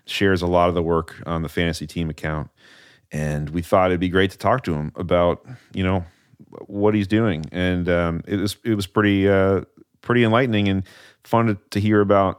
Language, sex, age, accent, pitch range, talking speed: English, male, 30-49, American, 85-100 Hz, 210 wpm